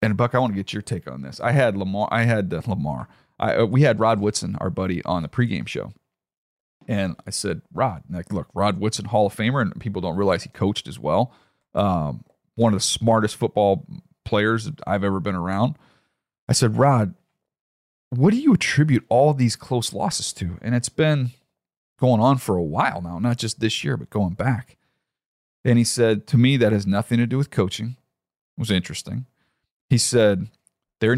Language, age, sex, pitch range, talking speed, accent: English, 40-59, male, 100-125 Hz, 200 wpm, American